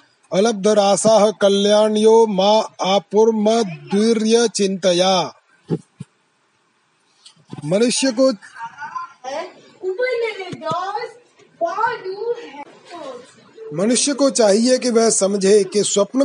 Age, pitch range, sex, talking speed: 30-49, 195-235 Hz, male, 65 wpm